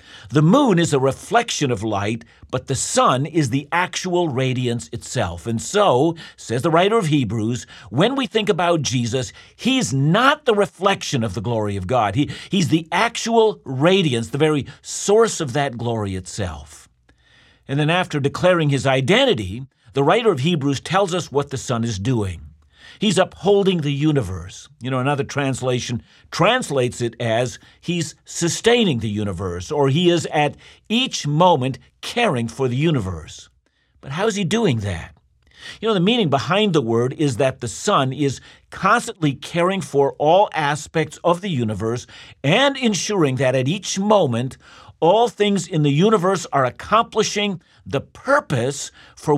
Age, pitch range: 50-69, 120-185 Hz